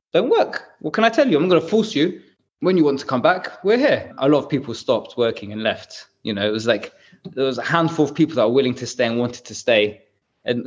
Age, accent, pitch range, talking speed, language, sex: 20-39, British, 115-155 Hz, 270 wpm, English, male